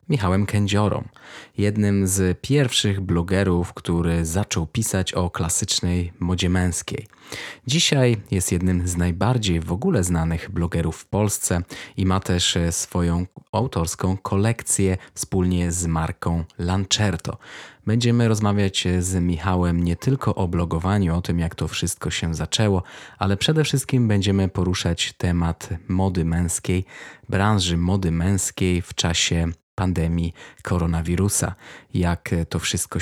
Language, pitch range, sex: Polish, 85-100 Hz, male